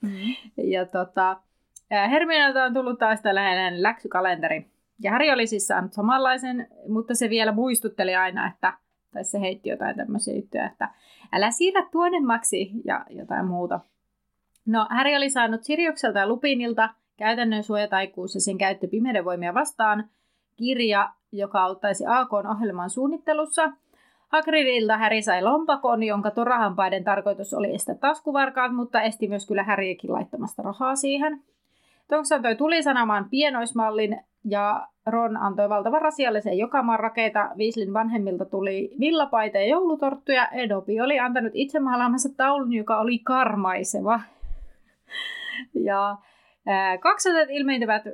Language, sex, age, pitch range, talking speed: Finnish, female, 30-49, 205-270 Hz, 120 wpm